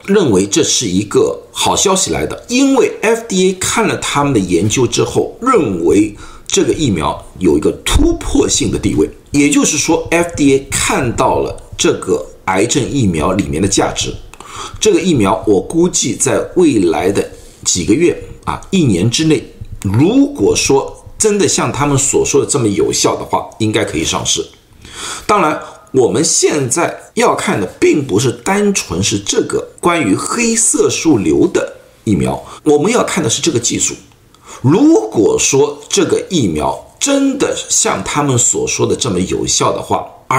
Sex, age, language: male, 50-69, Chinese